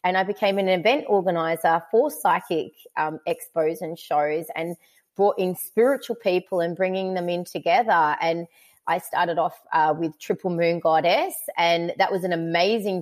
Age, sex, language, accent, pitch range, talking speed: 20-39, female, English, Australian, 170-200 Hz, 165 wpm